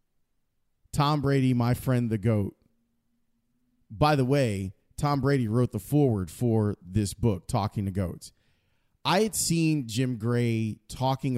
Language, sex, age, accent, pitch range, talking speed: English, male, 30-49, American, 115-145 Hz, 135 wpm